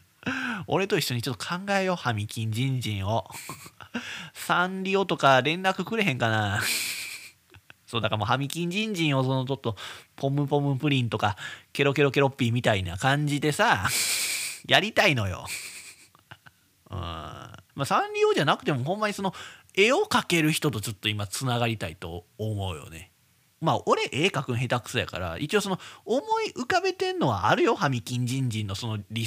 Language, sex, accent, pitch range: Japanese, male, native, 105-160 Hz